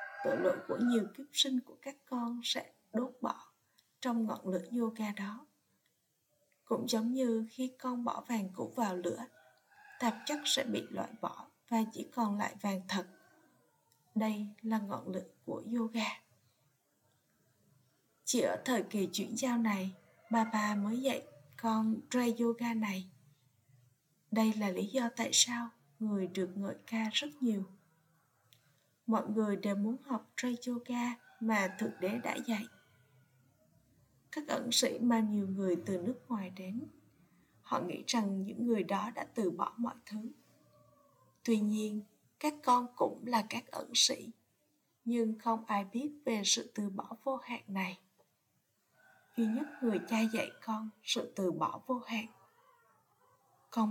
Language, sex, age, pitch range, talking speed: Vietnamese, female, 20-39, 200-245 Hz, 150 wpm